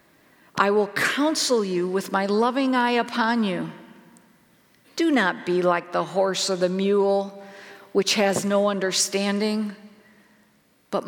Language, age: English, 50-69